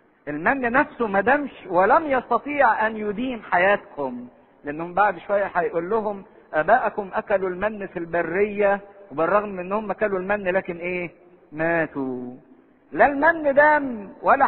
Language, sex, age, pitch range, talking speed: English, male, 50-69, 175-225 Hz, 130 wpm